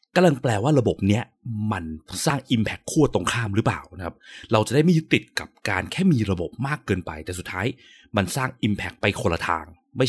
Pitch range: 90-135 Hz